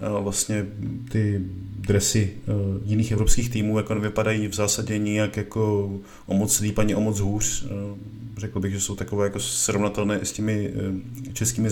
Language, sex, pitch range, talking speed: Czech, male, 105-120 Hz, 145 wpm